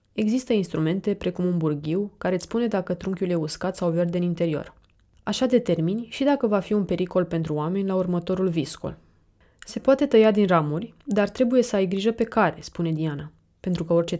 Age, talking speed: 20-39, 195 wpm